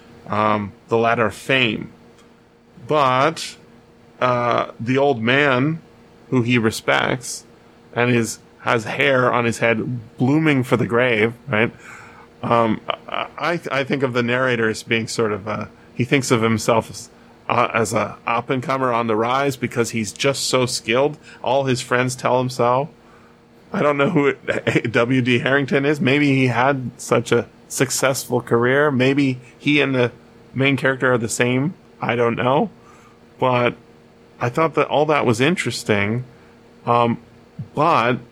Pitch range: 115-135 Hz